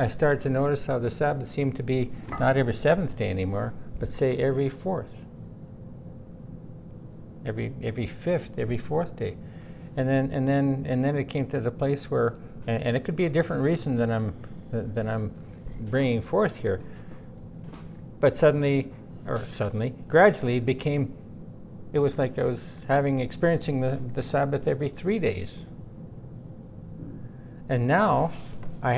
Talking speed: 150 wpm